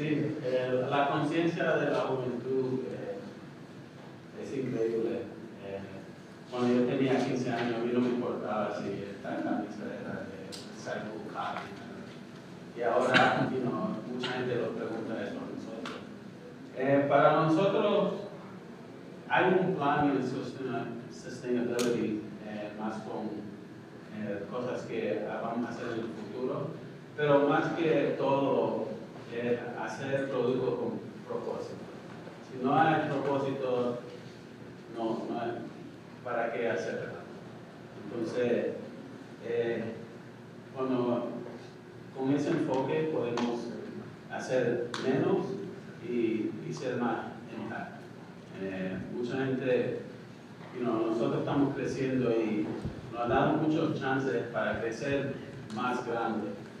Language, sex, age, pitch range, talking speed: Spanish, male, 30-49, 115-140 Hz, 115 wpm